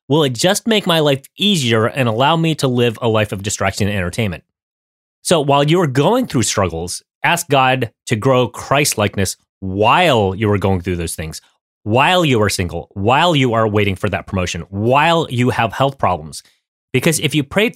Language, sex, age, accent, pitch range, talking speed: English, male, 30-49, American, 110-160 Hz, 195 wpm